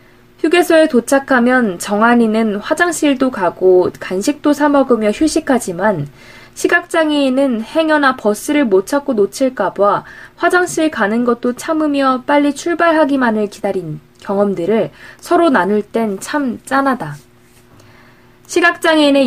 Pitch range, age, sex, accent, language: 205-295 Hz, 20-39, female, native, Korean